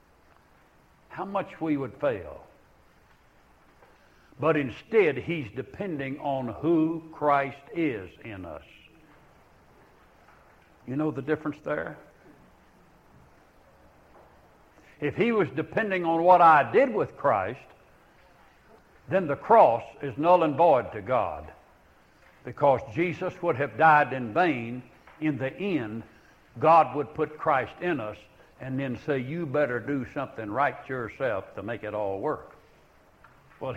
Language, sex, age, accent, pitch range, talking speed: English, male, 60-79, American, 120-170 Hz, 125 wpm